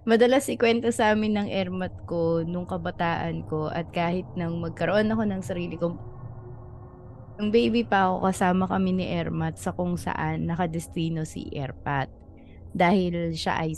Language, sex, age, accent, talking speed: English, female, 20-39, Filipino, 155 wpm